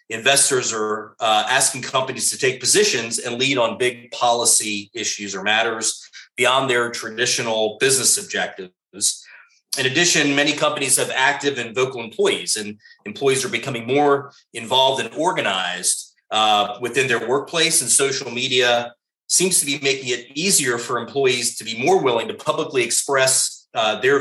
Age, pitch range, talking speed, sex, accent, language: 30-49, 110-140 Hz, 155 wpm, male, American, English